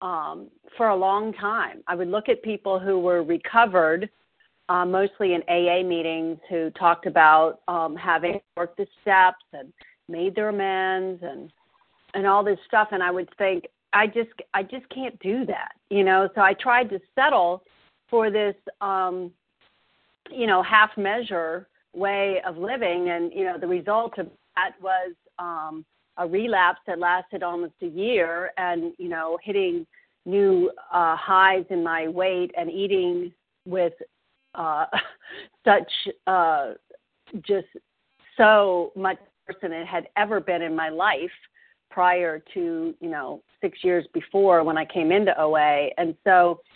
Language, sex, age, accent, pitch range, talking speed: English, female, 40-59, American, 175-220 Hz, 155 wpm